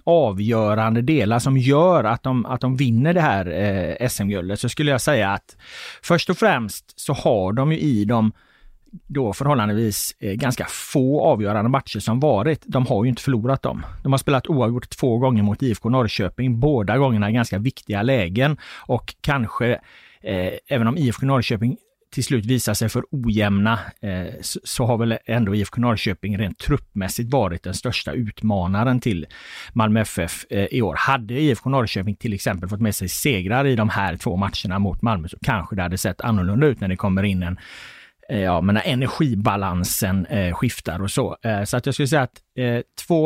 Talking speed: 175 wpm